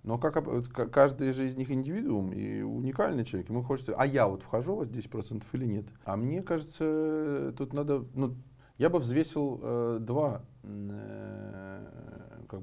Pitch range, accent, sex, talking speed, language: 110-150 Hz, native, male, 155 wpm, Russian